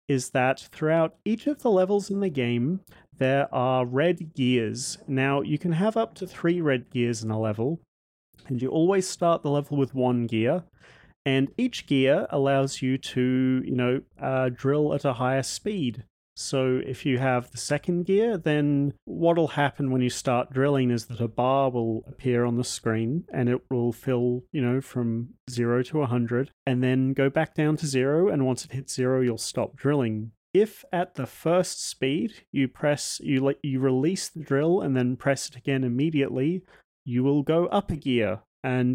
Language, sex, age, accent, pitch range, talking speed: English, male, 30-49, Australian, 120-150 Hz, 190 wpm